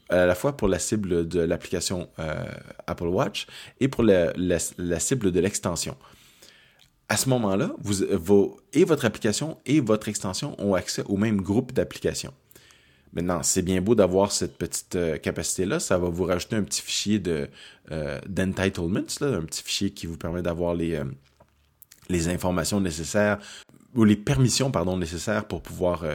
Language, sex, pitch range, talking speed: French, male, 90-110 Hz, 155 wpm